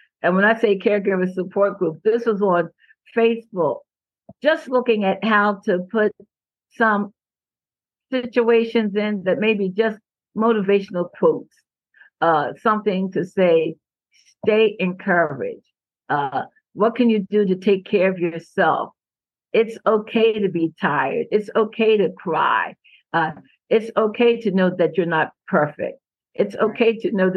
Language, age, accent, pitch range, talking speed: English, 50-69, American, 180-220 Hz, 140 wpm